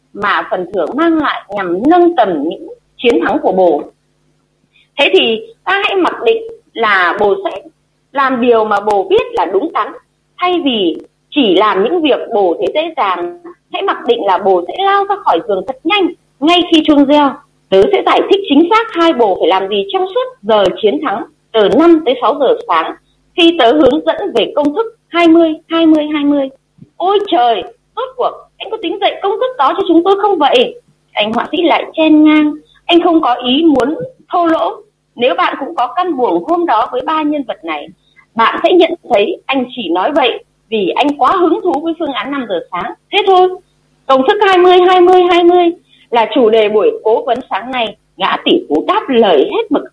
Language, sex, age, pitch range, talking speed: Vietnamese, female, 20-39, 270-375 Hz, 200 wpm